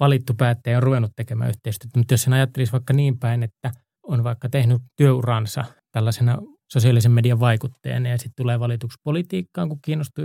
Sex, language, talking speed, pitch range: male, Finnish, 165 wpm, 120-140 Hz